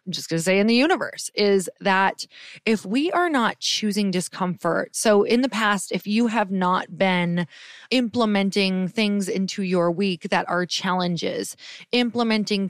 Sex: female